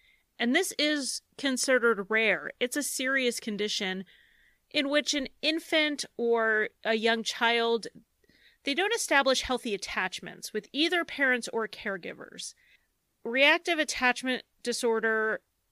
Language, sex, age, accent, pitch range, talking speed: English, female, 30-49, American, 215-270 Hz, 115 wpm